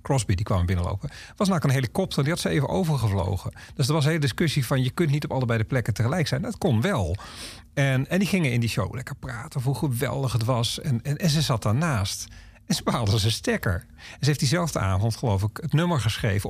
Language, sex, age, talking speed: Dutch, male, 40-59, 245 wpm